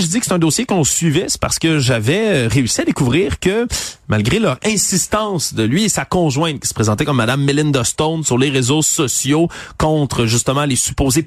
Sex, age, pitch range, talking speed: male, 30-49, 135-175 Hz, 210 wpm